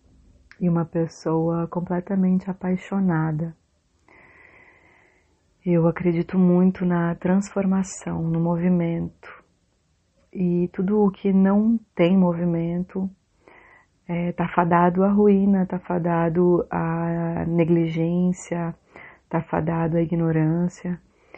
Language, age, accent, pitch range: Portuguese, 30-49, Brazilian, 165-190 Hz